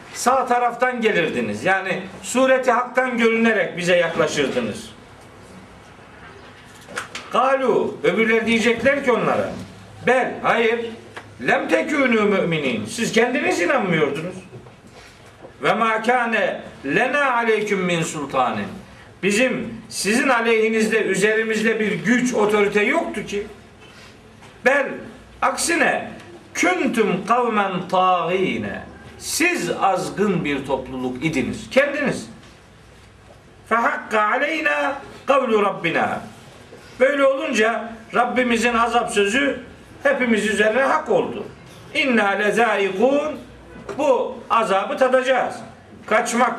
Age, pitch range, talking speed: 50-69, 210-260 Hz, 85 wpm